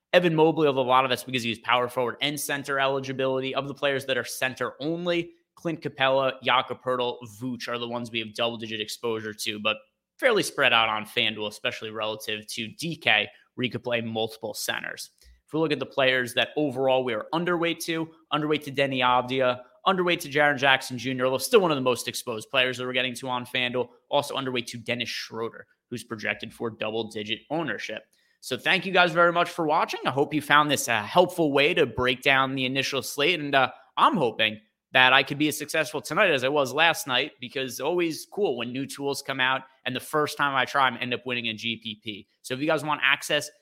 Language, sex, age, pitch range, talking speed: English, male, 20-39, 120-145 Hz, 220 wpm